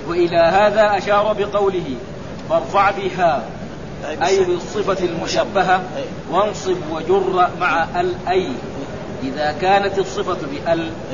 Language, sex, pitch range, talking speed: Arabic, male, 165-195 Hz, 90 wpm